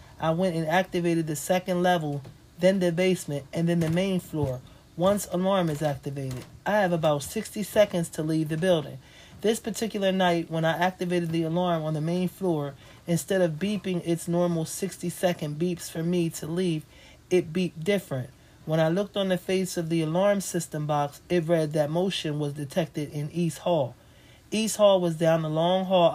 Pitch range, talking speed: 155-180 Hz, 190 wpm